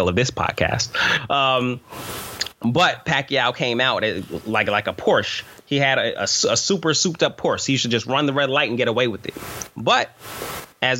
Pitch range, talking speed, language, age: 115-155 Hz, 190 wpm, English, 30-49